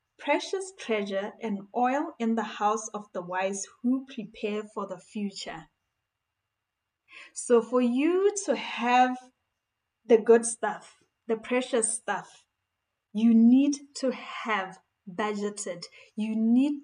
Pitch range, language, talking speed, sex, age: 200-245 Hz, English, 120 wpm, female, 20-39